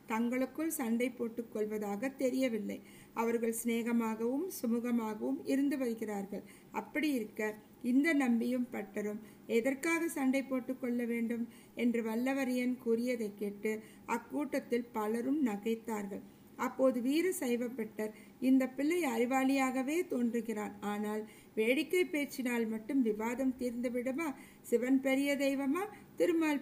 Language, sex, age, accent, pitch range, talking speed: Tamil, female, 50-69, native, 225-270 Hz, 95 wpm